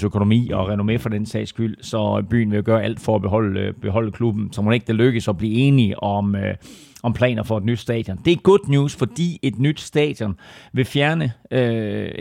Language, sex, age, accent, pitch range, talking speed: Danish, male, 30-49, native, 105-125 Hz, 215 wpm